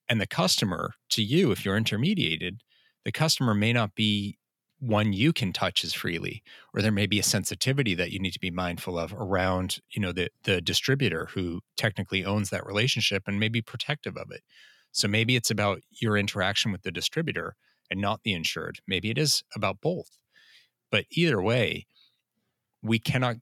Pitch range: 95-115 Hz